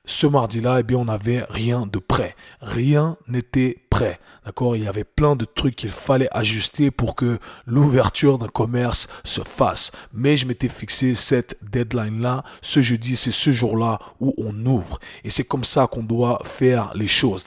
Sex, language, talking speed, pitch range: male, French, 180 wpm, 115-130 Hz